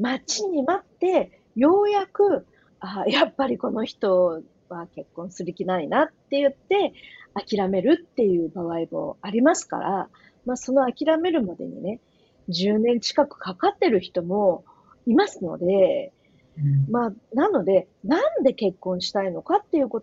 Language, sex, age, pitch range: Japanese, female, 40-59, 185-290 Hz